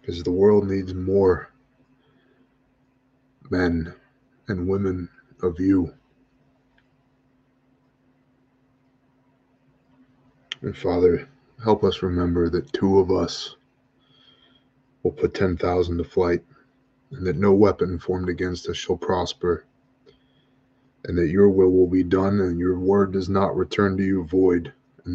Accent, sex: American, male